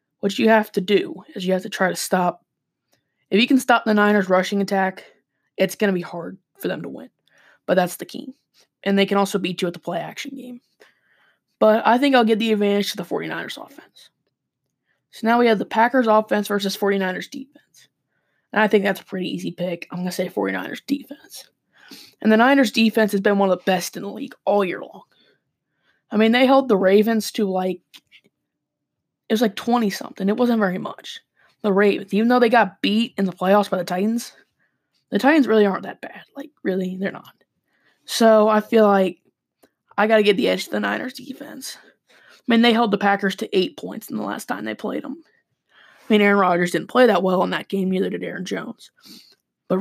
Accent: American